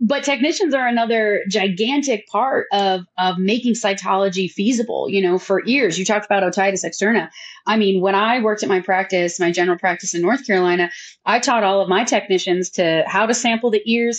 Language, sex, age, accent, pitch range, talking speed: English, female, 30-49, American, 185-220 Hz, 195 wpm